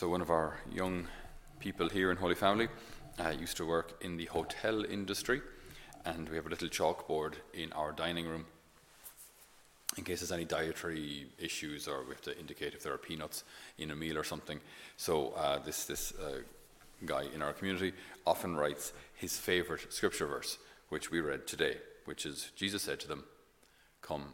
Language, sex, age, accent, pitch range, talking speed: English, male, 30-49, Irish, 75-95 Hz, 180 wpm